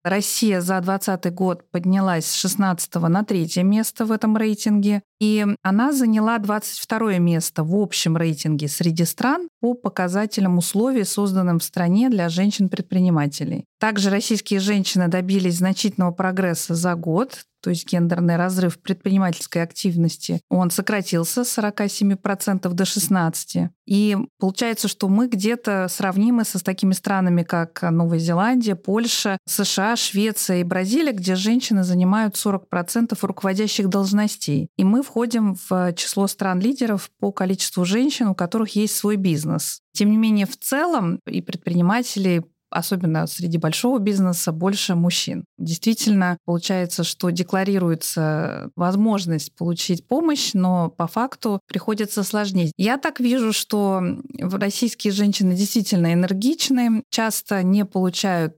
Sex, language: female, Russian